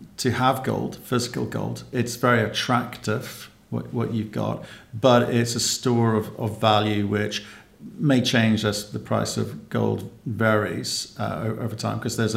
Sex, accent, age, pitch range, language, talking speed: male, British, 50-69, 110-125 Hz, English, 160 wpm